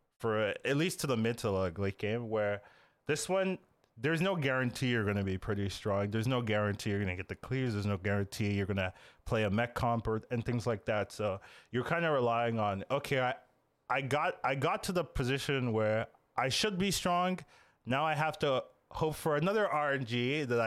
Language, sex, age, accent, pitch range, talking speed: English, male, 20-39, American, 110-155 Hz, 215 wpm